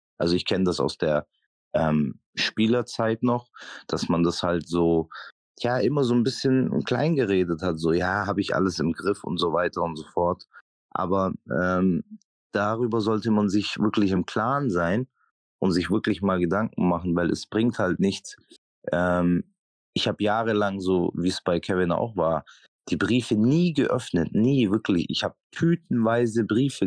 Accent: German